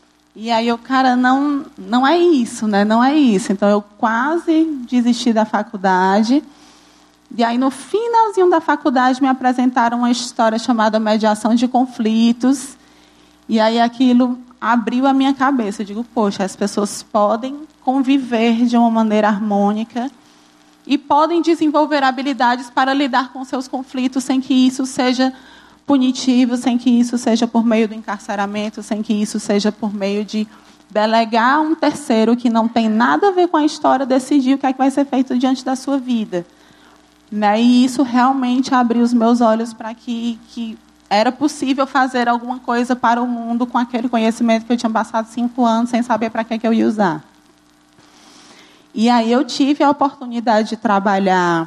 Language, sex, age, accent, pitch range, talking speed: Portuguese, female, 20-39, Brazilian, 220-265 Hz, 170 wpm